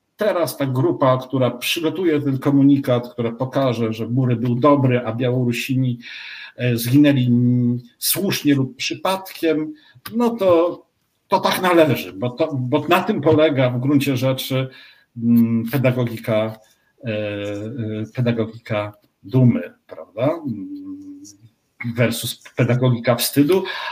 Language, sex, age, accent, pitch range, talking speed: Polish, male, 50-69, native, 125-155 Hz, 100 wpm